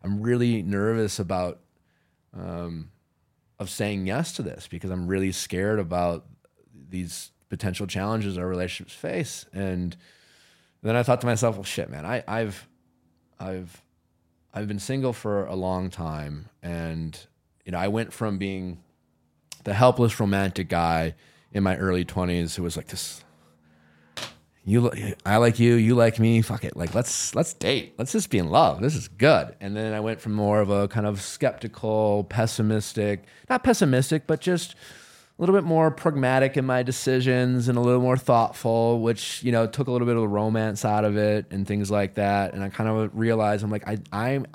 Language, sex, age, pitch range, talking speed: English, male, 30-49, 90-120 Hz, 185 wpm